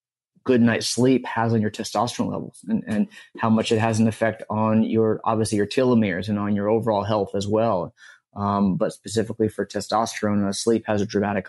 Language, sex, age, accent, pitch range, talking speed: English, male, 20-39, American, 105-115 Hz, 200 wpm